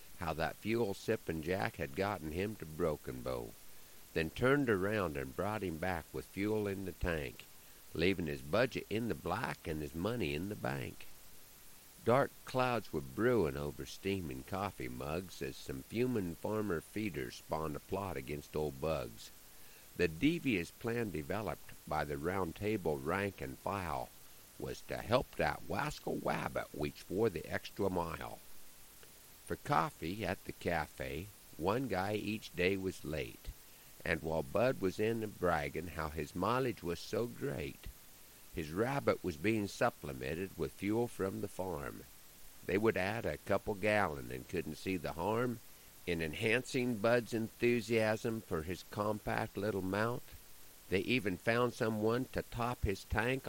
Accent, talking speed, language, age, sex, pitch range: American, 150 wpm, English, 50-69, male, 80-110 Hz